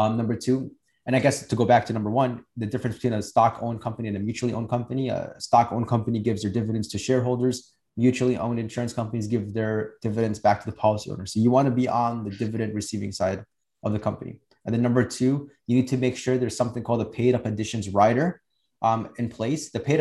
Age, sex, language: 20-39, male, English